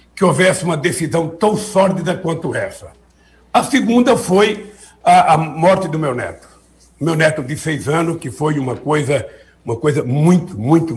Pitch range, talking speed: 140-185 Hz, 160 wpm